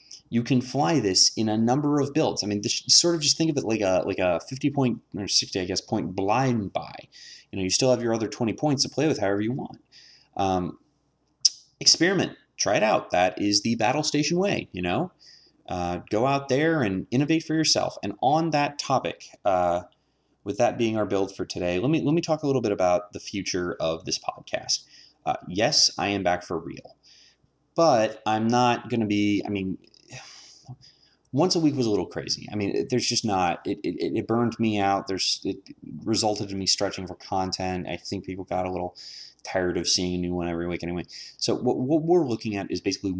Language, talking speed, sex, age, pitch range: English, 220 wpm, male, 30-49, 95-125 Hz